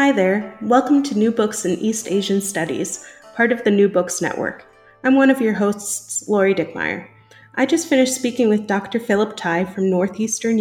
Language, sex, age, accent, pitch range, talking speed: English, female, 30-49, American, 180-225 Hz, 185 wpm